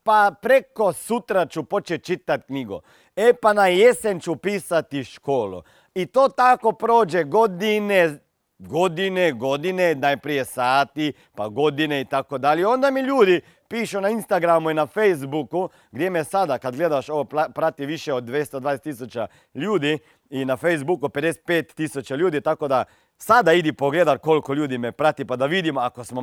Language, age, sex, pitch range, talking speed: Croatian, 40-59, male, 145-200 Hz, 155 wpm